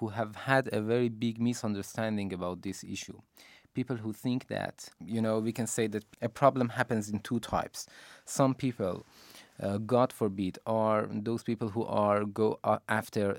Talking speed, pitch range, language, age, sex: 170 wpm, 105-130 Hz, Persian, 20-39, male